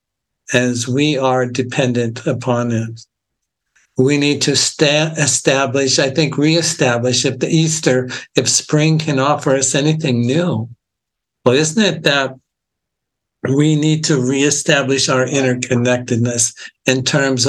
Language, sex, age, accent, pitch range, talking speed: English, male, 60-79, American, 125-155 Hz, 120 wpm